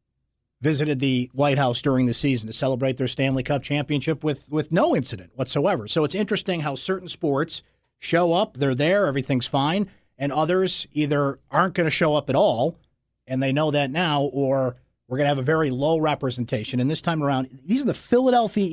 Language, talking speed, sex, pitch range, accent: English, 200 wpm, male, 130-170 Hz, American